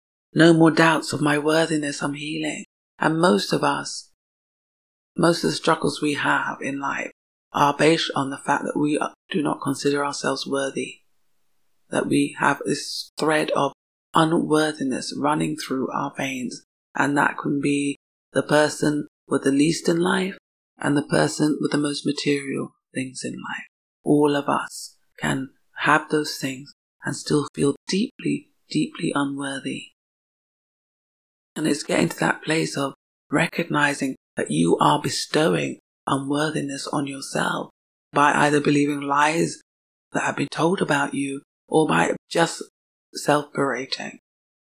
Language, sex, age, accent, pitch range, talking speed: English, female, 30-49, British, 140-155 Hz, 140 wpm